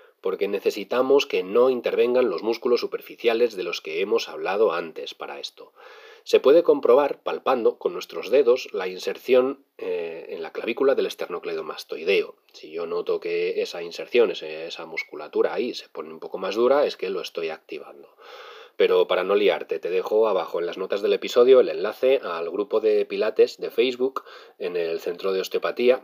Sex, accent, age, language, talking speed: male, Spanish, 40-59, Spanish, 175 wpm